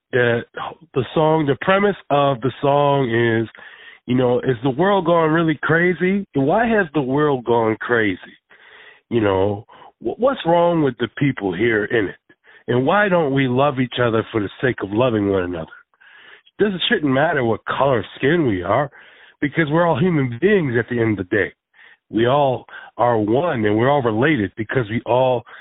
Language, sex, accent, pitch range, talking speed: English, male, American, 120-175 Hz, 185 wpm